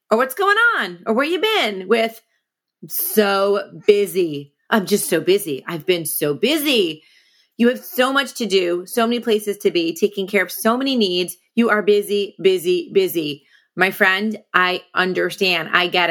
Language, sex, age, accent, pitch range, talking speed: English, female, 30-49, American, 190-250 Hz, 180 wpm